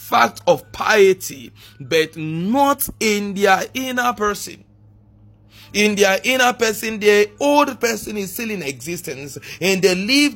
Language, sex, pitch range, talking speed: English, male, 145-220 Hz, 135 wpm